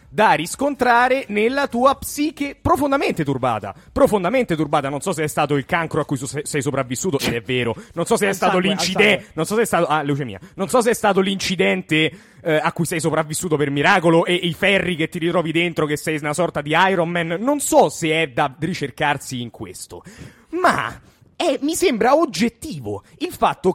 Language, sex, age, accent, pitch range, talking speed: Italian, male, 30-49, native, 150-235 Hz, 200 wpm